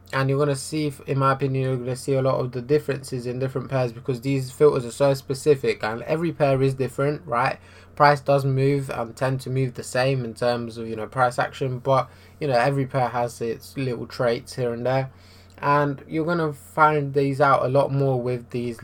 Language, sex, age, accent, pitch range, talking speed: English, male, 20-39, British, 115-140 Hz, 230 wpm